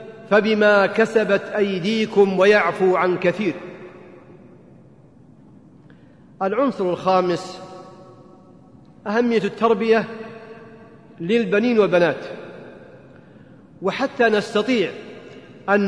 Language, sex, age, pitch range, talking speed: Arabic, male, 40-59, 195-235 Hz, 55 wpm